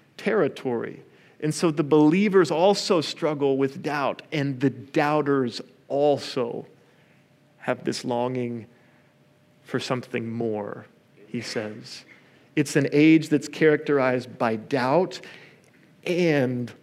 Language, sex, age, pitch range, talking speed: English, male, 40-59, 125-155 Hz, 105 wpm